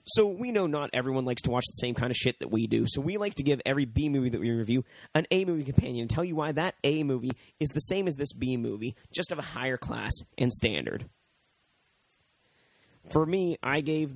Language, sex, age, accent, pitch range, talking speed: English, male, 30-49, American, 125-160 Hz, 220 wpm